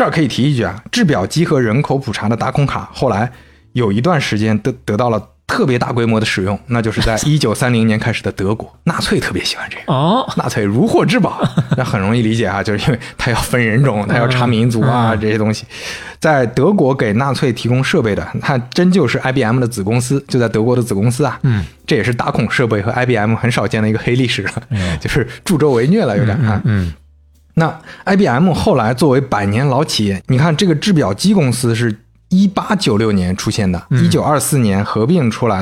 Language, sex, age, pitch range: Chinese, male, 20-39, 110-140 Hz